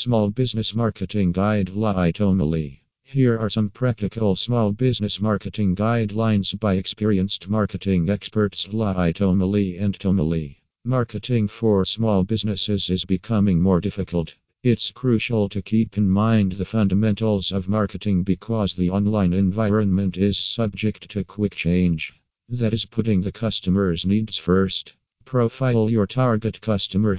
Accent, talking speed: American, 130 wpm